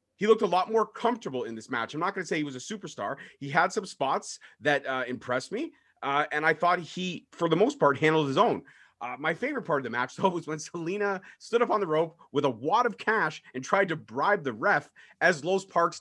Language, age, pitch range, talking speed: English, 30-49, 130-175 Hz, 255 wpm